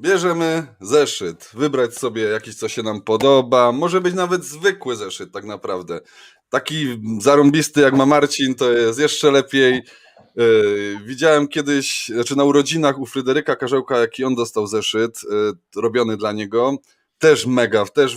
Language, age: Polish, 20-39